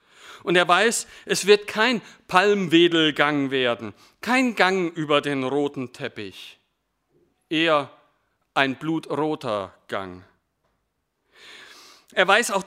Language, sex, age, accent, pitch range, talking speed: German, male, 50-69, German, 130-190 Hz, 100 wpm